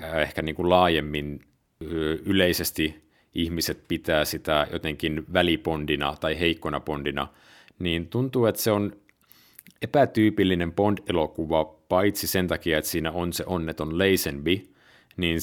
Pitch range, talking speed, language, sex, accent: 80-95 Hz, 115 wpm, Finnish, male, native